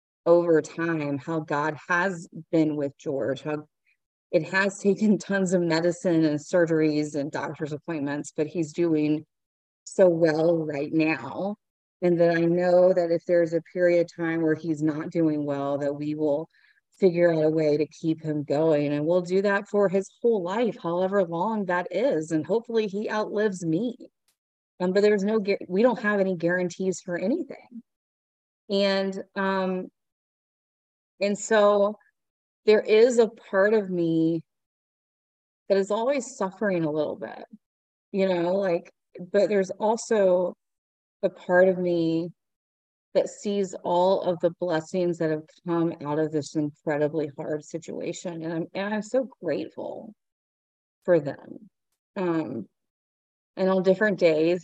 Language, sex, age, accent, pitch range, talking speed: English, female, 30-49, American, 155-195 Hz, 150 wpm